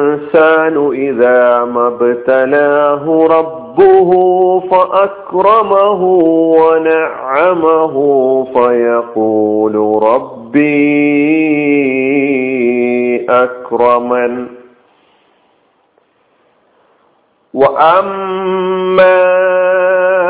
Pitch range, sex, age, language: 130-185 Hz, male, 40-59, Malayalam